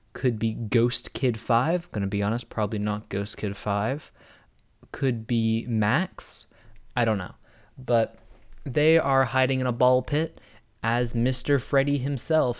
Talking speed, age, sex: 150 wpm, 20-39, male